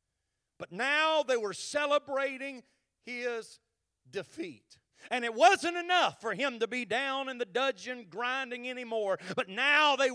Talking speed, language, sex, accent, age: 140 wpm, English, male, American, 40-59